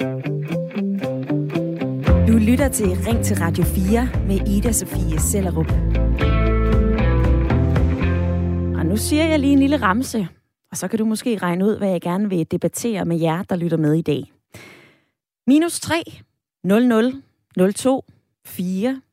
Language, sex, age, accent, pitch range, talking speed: Danish, female, 30-49, native, 165-245 Hz, 130 wpm